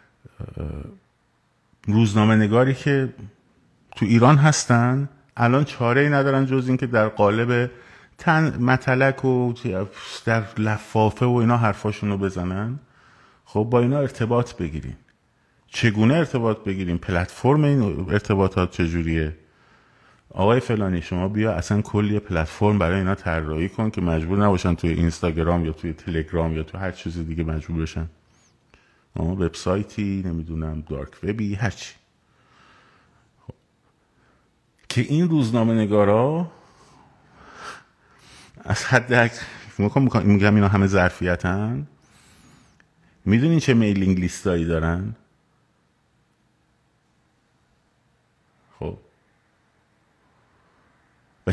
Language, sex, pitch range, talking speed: Persian, male, 90-125 Hz, 100 wpm